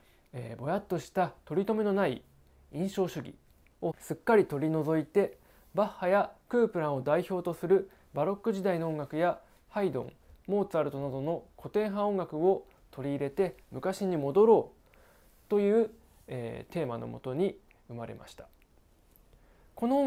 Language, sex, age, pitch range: Japanese, male, 20-39, 145-195 Hz